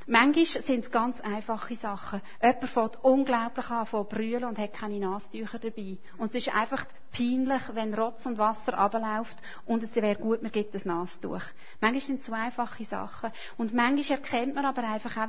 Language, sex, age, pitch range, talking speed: German, female, 30-49, 220-255 Hz, 190 wpm